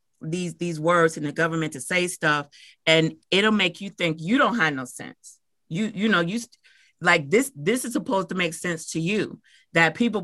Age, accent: 30-49, American